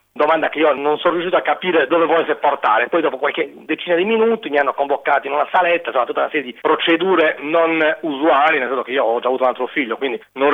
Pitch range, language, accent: 130-170 Hz, Italian, native